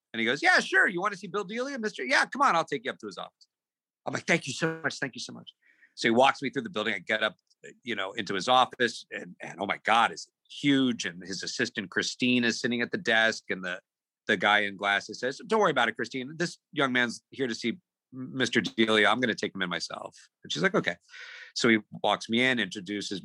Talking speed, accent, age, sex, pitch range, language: 260 wpm, American, 40-59, male, 105-145 Hz, English